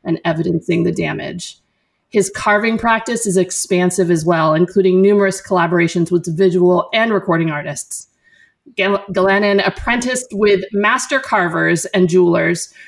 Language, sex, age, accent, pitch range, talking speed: English, female, 30-49, American, 175-205 Hz, 120 wpm